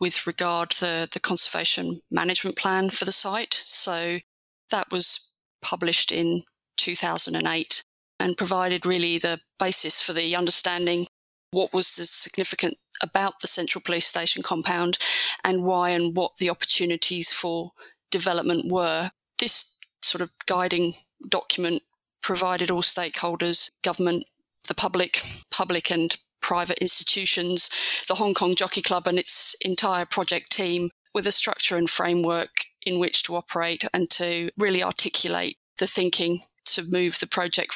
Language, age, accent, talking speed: English, 30-49, British, 140 wpm